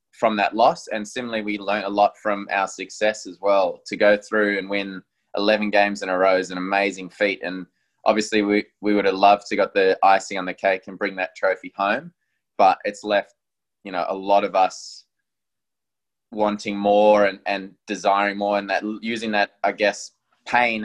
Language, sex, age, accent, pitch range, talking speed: English, male, 20-39, Australian, 100-110 Hz, 200 wpm